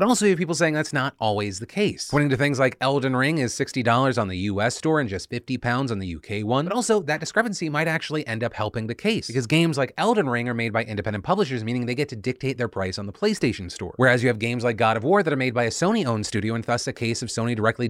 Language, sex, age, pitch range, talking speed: English, male, 30-49, 110-155 Hz, 290 wpm